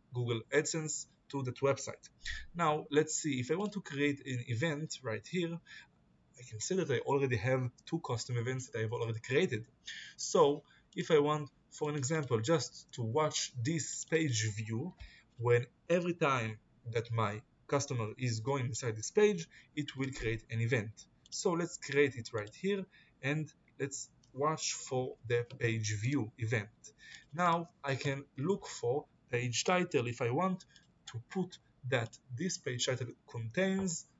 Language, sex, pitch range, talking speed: Hebrew, male, 115-155 Hz, 160 wpm